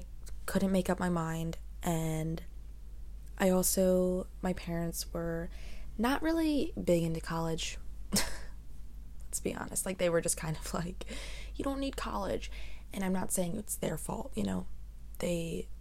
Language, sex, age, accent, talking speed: English, female, 20-39, American, 150 wpm